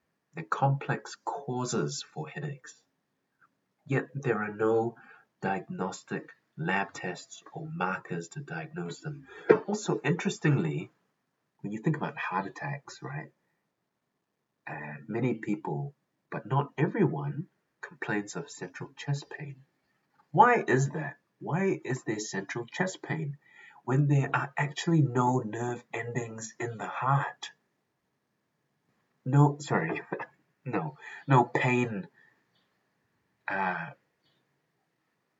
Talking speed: 105 wpm